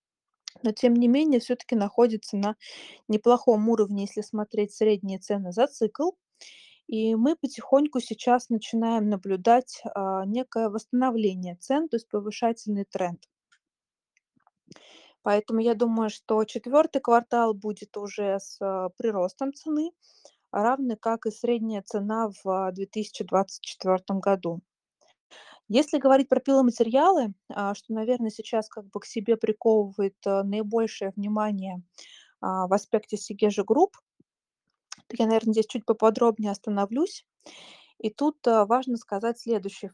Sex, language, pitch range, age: female, Russian, 205-240 Hz, 20-39